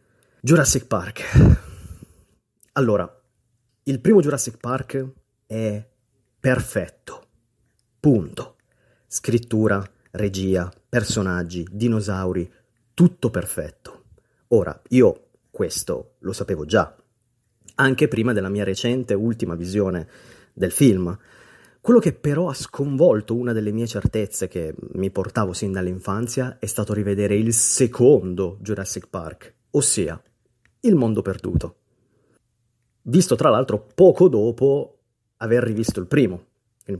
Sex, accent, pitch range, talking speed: male, native, 105-135 Hz, 105 wpm